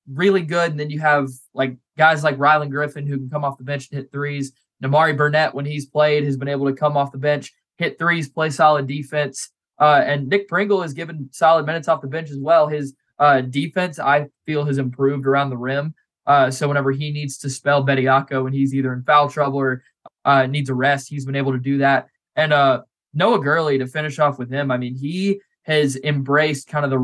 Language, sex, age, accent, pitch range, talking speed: English, male, 20-39, American, 135-150 Hz, 230 wpm